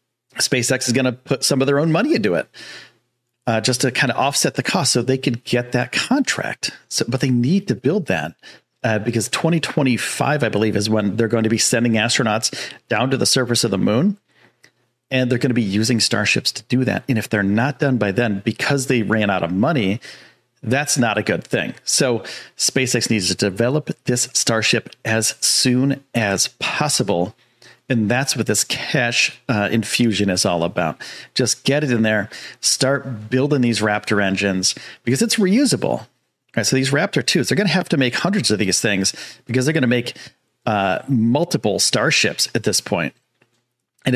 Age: 40-59